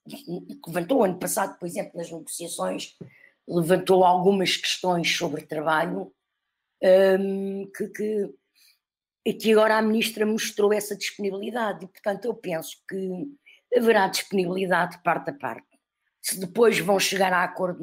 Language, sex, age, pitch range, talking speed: Portuguese, female, 50-69, 165-200 Hz, 125 wpm